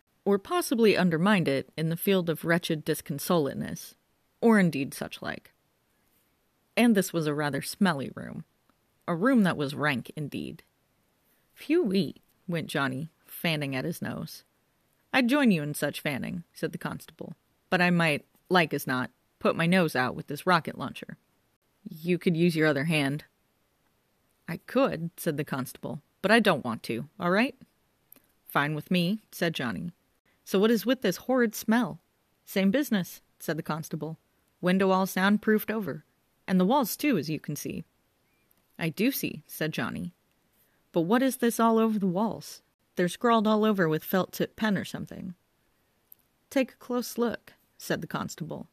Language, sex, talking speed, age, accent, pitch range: English, female, 165 wpm, 30-49, American, 160-220 Hz